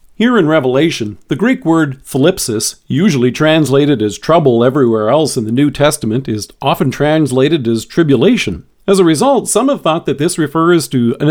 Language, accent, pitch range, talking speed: English, American, 130-175 Hz, 175 wpm